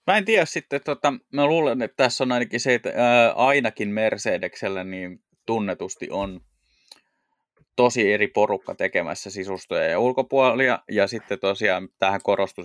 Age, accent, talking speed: 20-39, native, 145 wpm